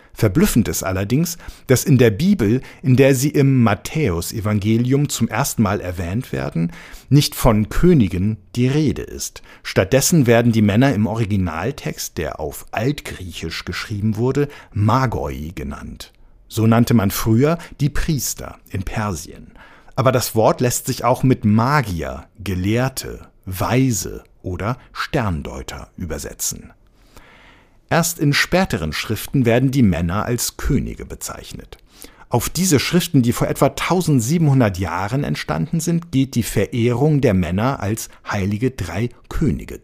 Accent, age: German, 50-69